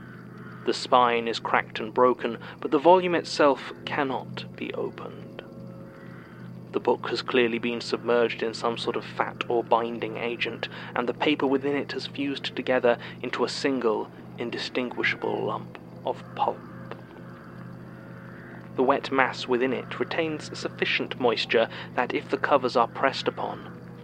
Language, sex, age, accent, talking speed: English, male, 30-49, British, 140 wpm